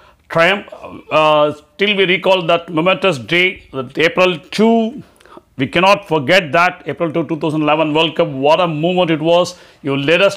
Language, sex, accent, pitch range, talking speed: Tamil, male, native, 155-190 Hz, 160 wpm